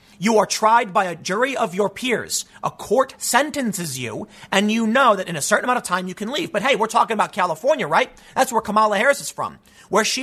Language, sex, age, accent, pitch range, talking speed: English, male, 30-49, American, 180-230 Hz, 240 wpm